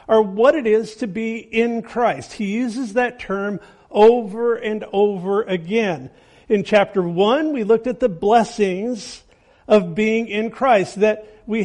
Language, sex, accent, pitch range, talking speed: English, male, American, 200-245 Hz, 155 wpm